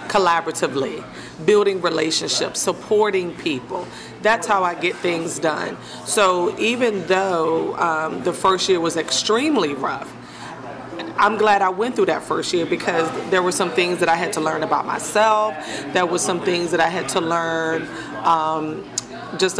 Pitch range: 165-195 Hz